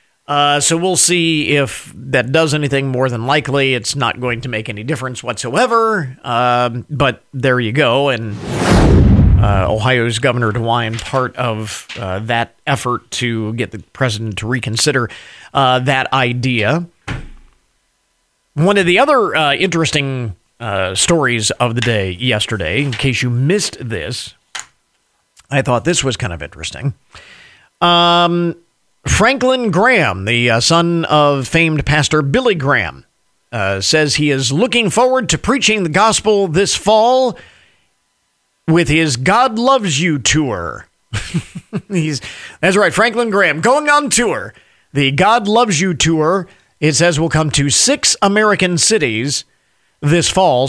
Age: 40-59